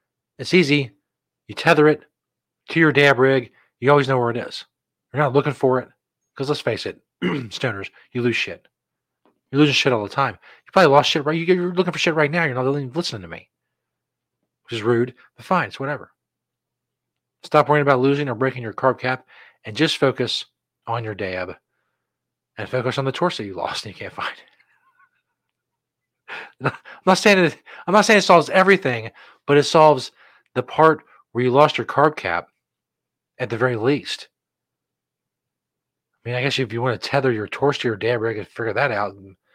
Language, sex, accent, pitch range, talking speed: English, male, American, 120-170 Hz, 195 wpm